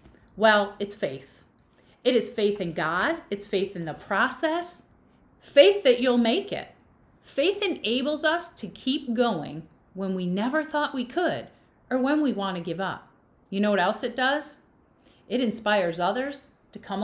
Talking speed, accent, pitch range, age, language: 170 wpm, American, 190-285 Hz, 40-59, English